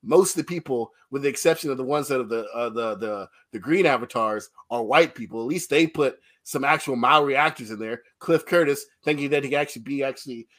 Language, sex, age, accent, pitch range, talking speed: English, male, 30-49, American, 130-180 Hz, 230 wpm